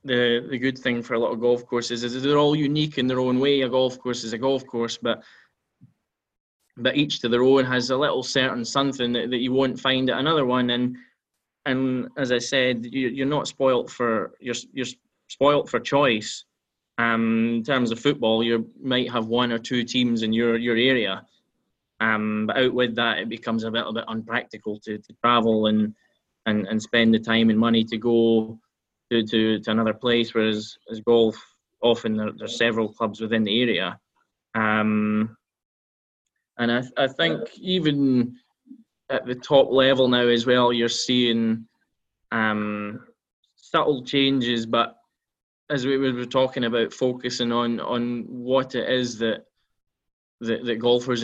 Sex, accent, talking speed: male, British, 175 wpm